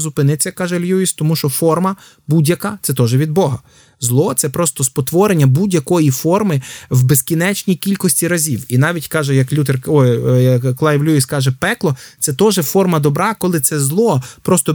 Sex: male